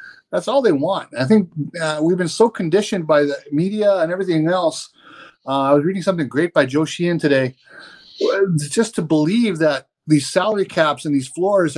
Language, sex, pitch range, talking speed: English, male, 145-200 Hz, 190 wpm